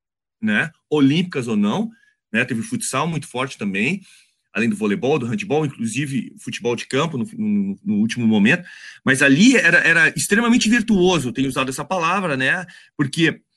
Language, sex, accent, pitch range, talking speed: Portuguese, male, Brazilian, 140-210 Hz, 160 wpm